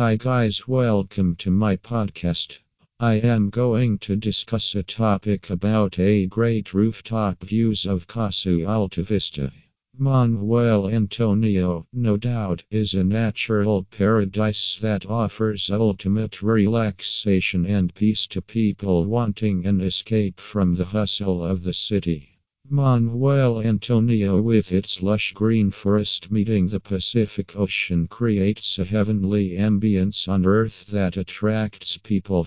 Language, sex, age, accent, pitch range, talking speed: English, male, 50-69, American, 95-110 Hz, 125 wpm